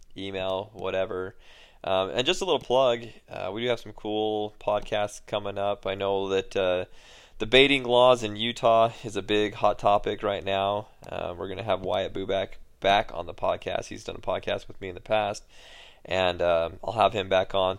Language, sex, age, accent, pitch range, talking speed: English, male, 20-39, American, 95-110 Hz, 200 wpm